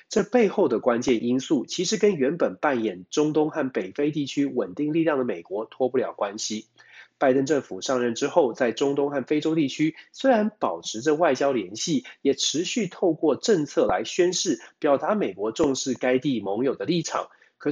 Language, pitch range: Chinese, 130-175 Hz